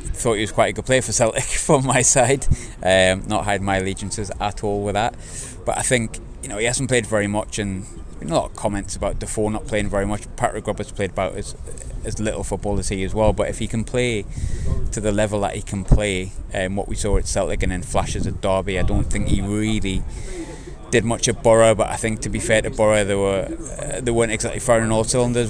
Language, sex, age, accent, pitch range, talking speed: English, male, 20-39, British, 100-110 Hz, 245 wpm